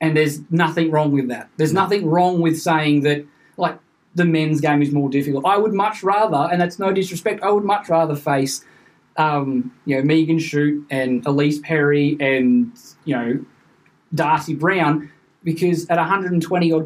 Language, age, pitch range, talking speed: English, 20-39, 145-180 Hz, 170 wpm